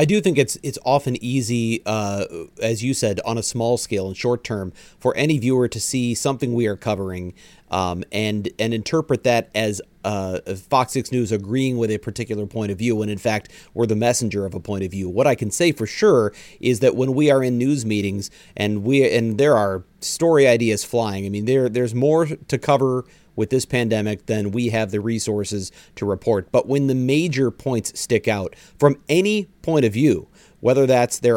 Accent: American